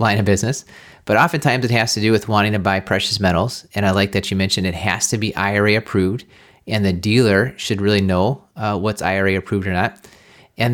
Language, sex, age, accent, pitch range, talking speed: English, male, 30-49, American, 95-120 Hz, 225 wpm